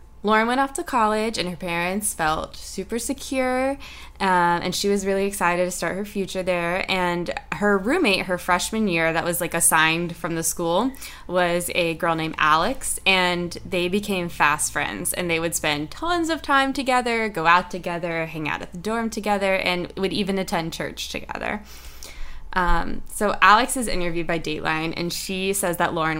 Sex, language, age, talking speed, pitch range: female, English, 10-29, 185 wpm, 165-205 Hz